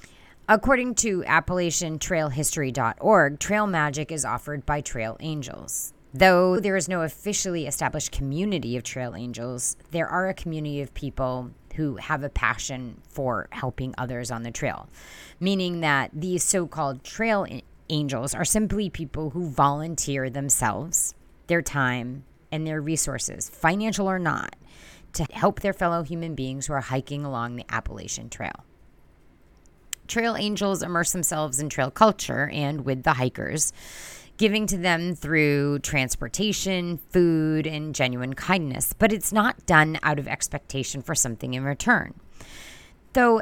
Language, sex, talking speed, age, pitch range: English, female, 140 wpm, 30-49, 135-190 Hz